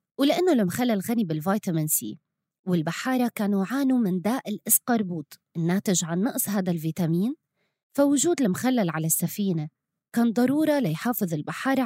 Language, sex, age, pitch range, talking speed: English, female, 20-39, 170-255 Hz, 120 wpm